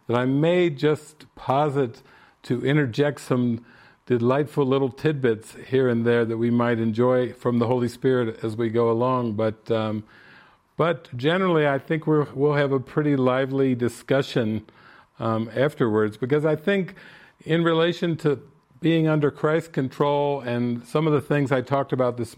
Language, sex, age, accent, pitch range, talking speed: English, male, 50-69, American, 115-145 Hz, 160 wpm